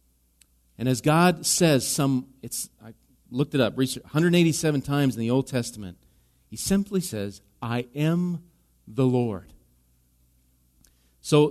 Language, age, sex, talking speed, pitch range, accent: English, 40-59, male, 125 wpm, 100-150 Hz, American